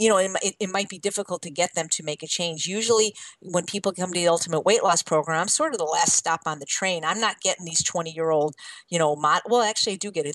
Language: English